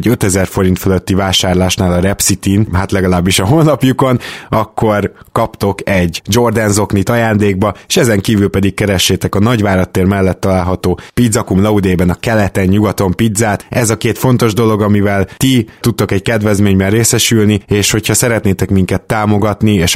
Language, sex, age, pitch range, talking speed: Hungarian, male, 20-39, 95-110 Hz, 145 wpm